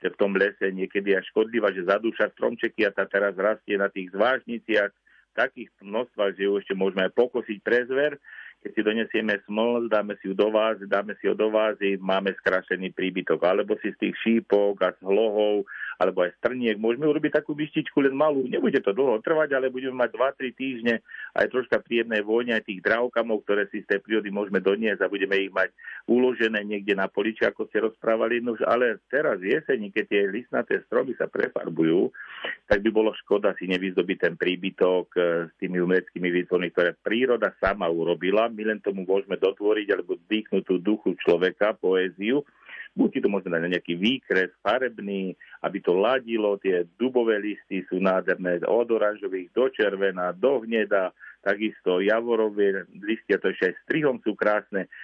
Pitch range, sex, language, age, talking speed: 95-115 Hz, male, Slovak, 50-69, 175 wpm